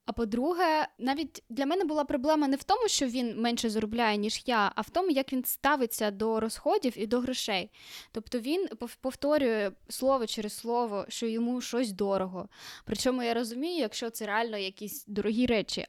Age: 10-29